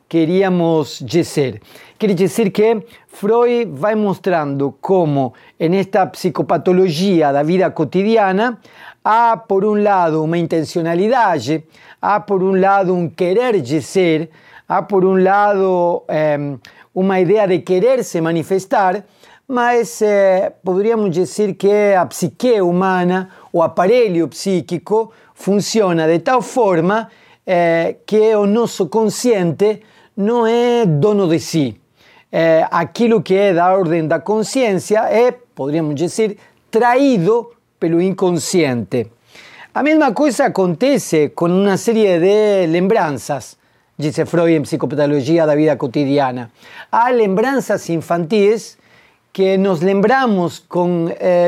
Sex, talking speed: male, 115 wpm